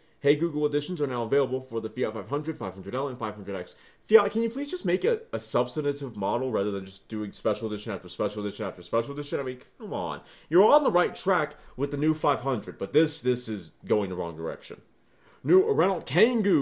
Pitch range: 115-160 Hz